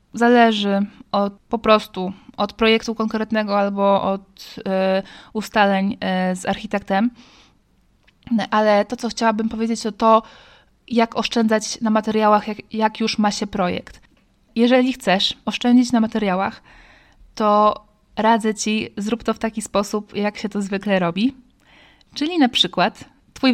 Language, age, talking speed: Polish, 20-39, 125 wpm